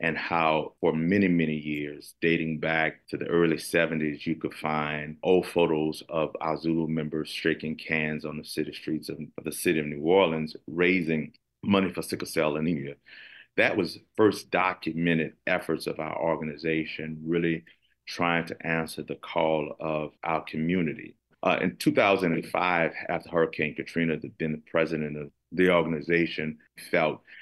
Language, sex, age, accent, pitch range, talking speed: English, male, 40-59, American, 75-80 Hz, 150 wpm